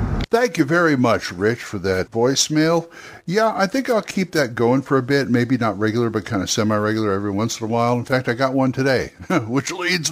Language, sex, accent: English, male, American